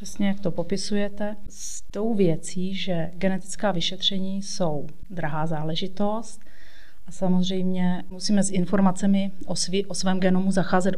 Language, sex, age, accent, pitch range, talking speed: Czech, female, 30-49, native, 175-190 Hz, 130 wpm